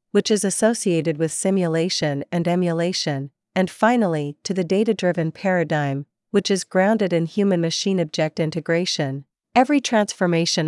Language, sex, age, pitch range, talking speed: Vietnamese, female, 40-59, 160-195 Hz, 120 wpm